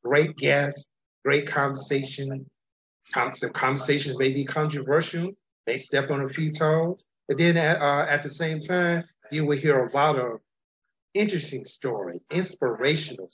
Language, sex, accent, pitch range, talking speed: English, male, American, 125-150 Hz, 140 wpm